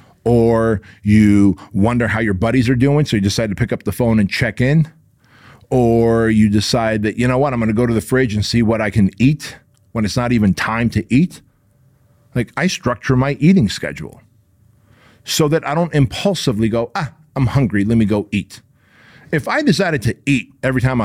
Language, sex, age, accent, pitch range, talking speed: English, male, 40-59, American, 110-135 Hz, 200 wpm